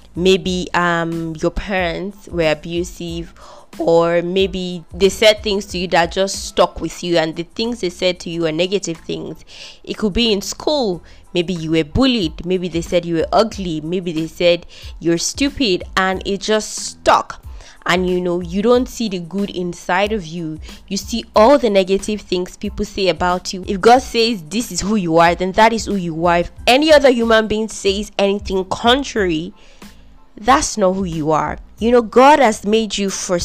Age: 20-39